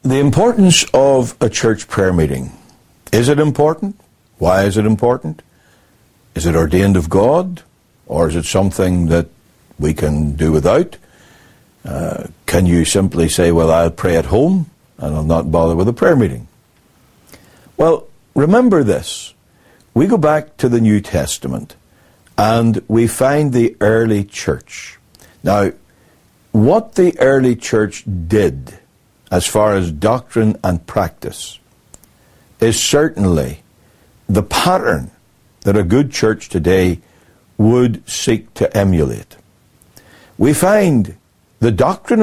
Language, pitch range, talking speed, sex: English, 90-135 Hz, 130 wpm, male